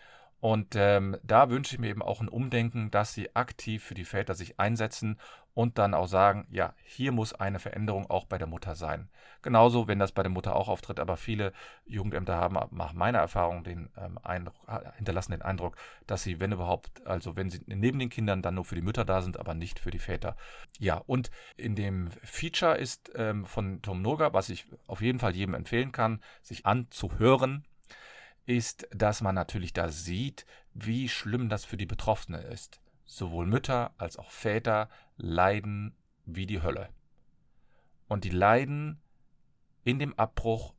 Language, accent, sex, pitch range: German, German, male, 95-120 Hz